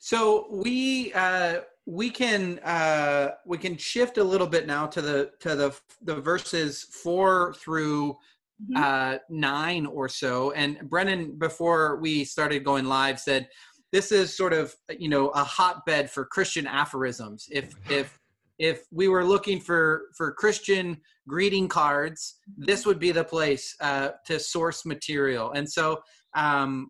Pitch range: 140-180 Hz